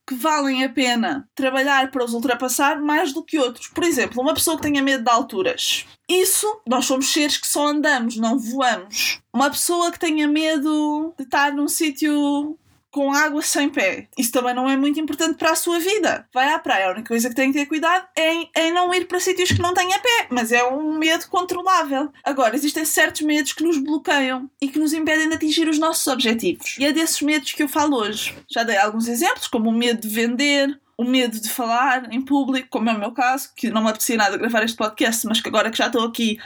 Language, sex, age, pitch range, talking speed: Portuguese, female, 20-39, 245-315 Hz, 230 wpm